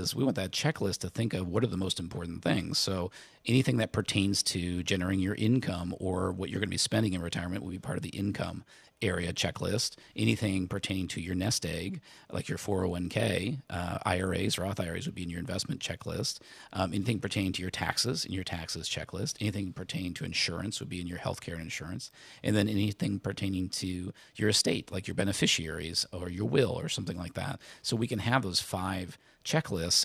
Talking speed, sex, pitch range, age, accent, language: 200 wpm, male, 90-105 Hz, 40-59, American, English